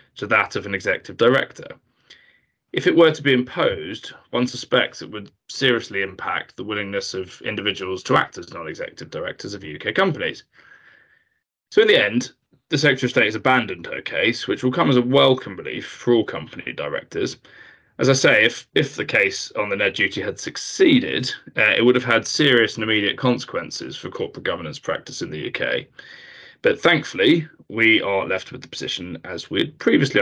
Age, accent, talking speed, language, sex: 20-39, British, 185 wpm, English, male